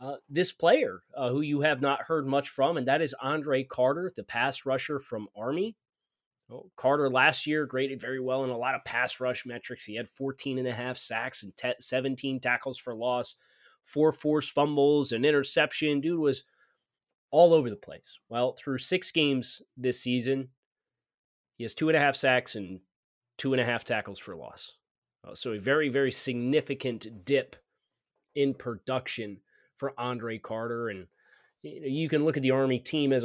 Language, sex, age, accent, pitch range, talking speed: English, male, 30-49, American, 120-155 Hz, 175 wpm